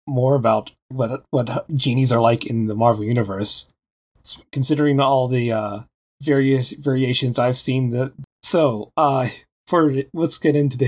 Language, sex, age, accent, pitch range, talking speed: English, male, 30-49, American, 130-170 Hz, 150 wpm